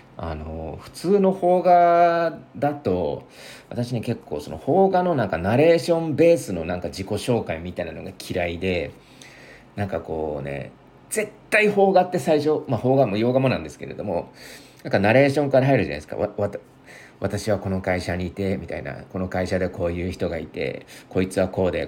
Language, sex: Japanese, male